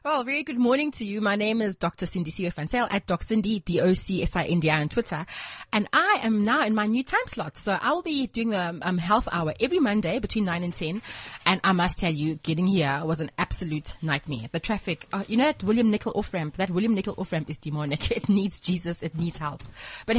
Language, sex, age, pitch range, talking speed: English, female, 20-39, 165-215 Hz, 220 wpm